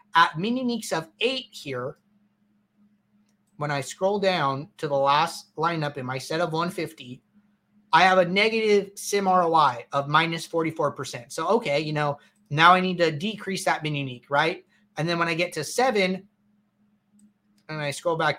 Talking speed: 165 wpm